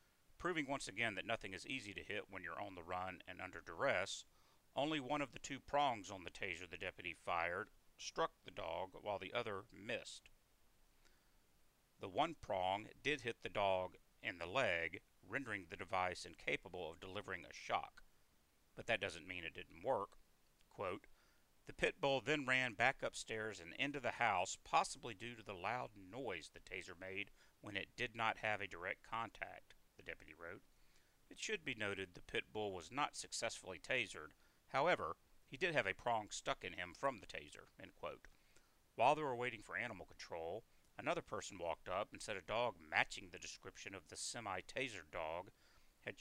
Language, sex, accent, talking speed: English, male, American, 185 wpm